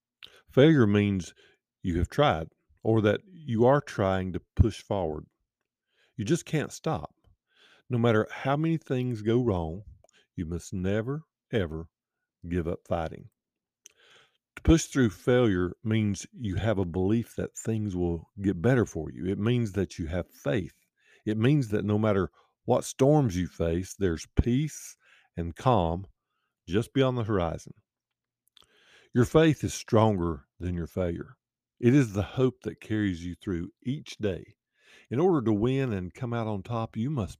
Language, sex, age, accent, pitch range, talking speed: English, male, 50-69, American, 90-120 Hz, 155 wpm